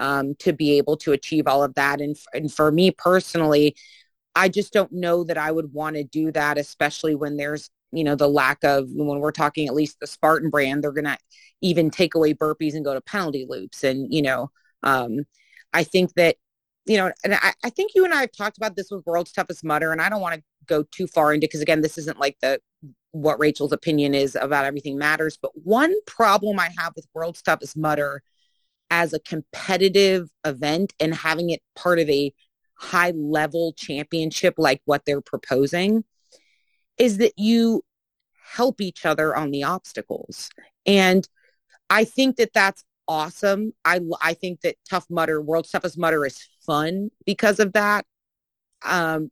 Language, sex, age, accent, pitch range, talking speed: English, female, 30-49, American, 150-190 Hz, 190 wpm